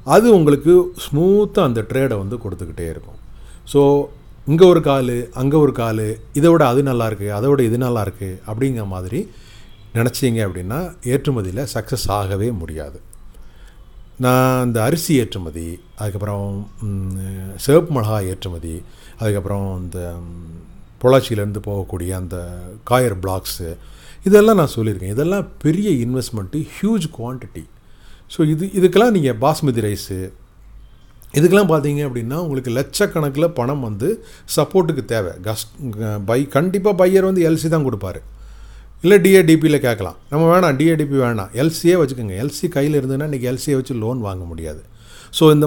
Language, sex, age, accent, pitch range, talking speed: Tamil, male, 40-59, native, 100-150 Hz, 125 wpm